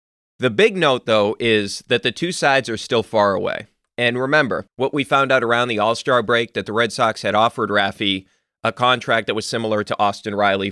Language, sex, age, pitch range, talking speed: English, male, 30-49, 110-140 Hz, 215 wpm